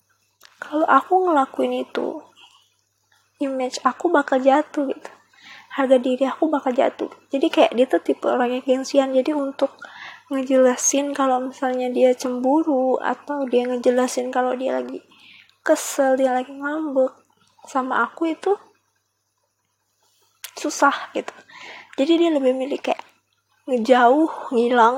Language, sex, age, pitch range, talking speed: Indonesian, female, 20-39, 255-310 Hz, 120 wpm